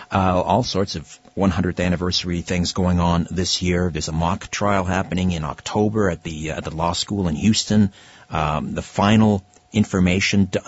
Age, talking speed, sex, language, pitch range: 50-69, 180 wpm, male, English, 95-125 Hz